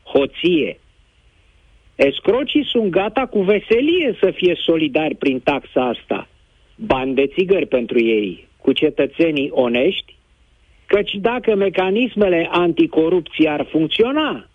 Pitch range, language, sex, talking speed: 145-215 Hz, Romanian, male, 110 wpm